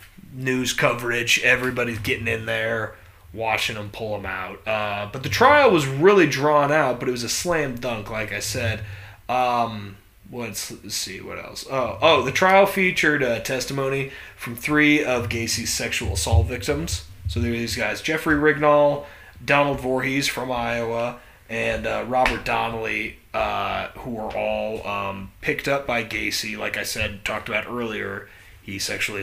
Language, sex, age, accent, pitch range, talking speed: English, male, 20-39, American, 100-130 Hz, 165 wpm